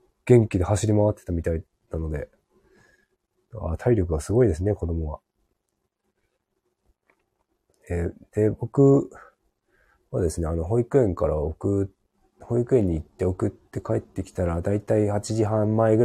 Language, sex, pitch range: Japanese, male, 85-115 Hz